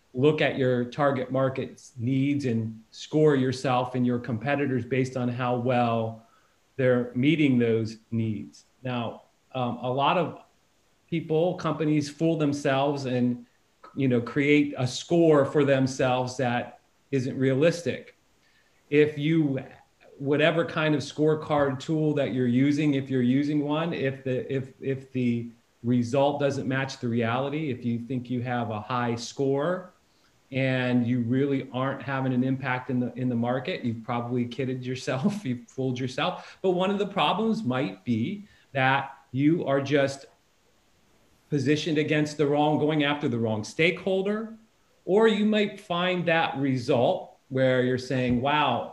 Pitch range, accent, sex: 125-150 Hz, American, male